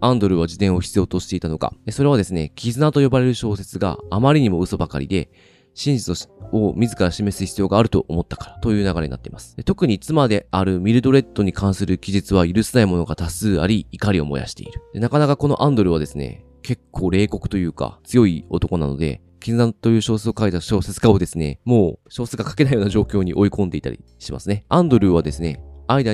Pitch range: 85-110 Hz